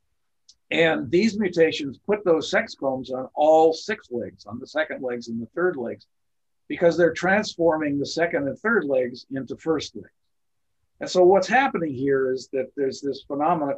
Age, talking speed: 50-69, 175 wpm